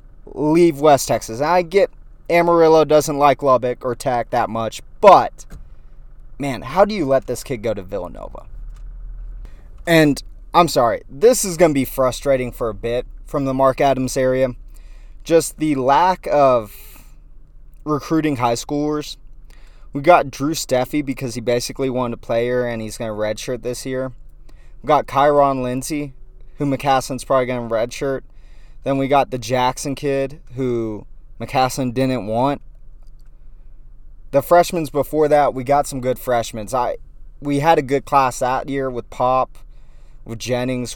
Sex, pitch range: male, 115-145 Hz